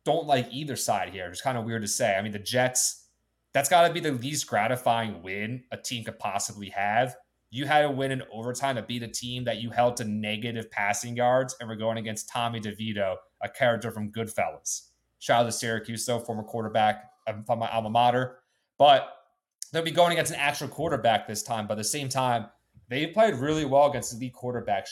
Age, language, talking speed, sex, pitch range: 30-49, English, 210 wpm, male, 110-130 Hz